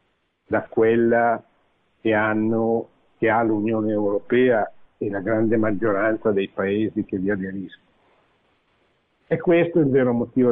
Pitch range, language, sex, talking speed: 105-135 Hz, Italian, male, 130 wpm